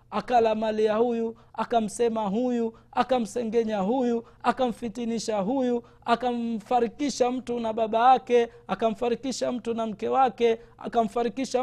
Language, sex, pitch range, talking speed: Swahili, male, 195-240 Hz, 105 wpm